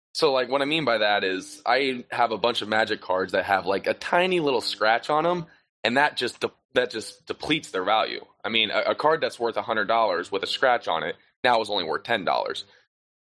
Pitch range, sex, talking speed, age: 105-145 Hz, male, 225 wpm, 20-39